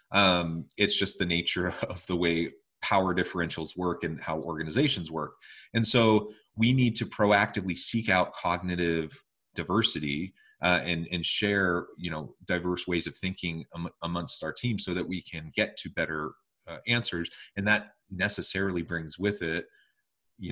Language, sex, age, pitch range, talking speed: English, male, 30-49, 85-110 Hz, 160 wpm